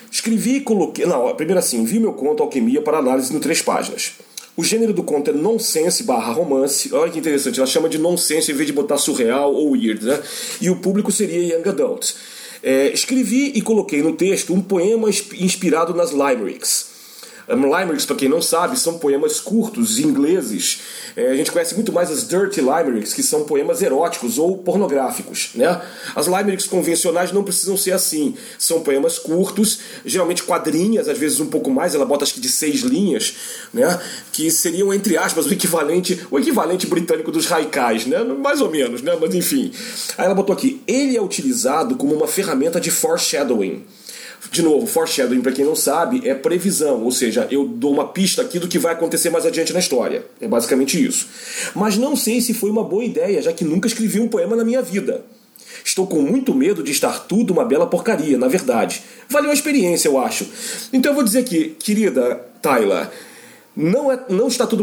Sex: male